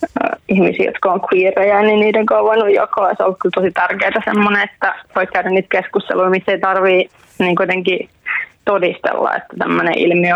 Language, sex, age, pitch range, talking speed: Finnish, female, 20-39, 185-220 Hz, 155 wpm